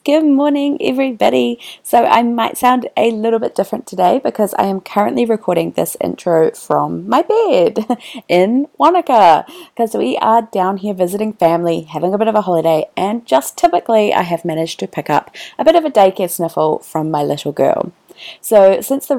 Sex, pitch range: female, 175-240 Hz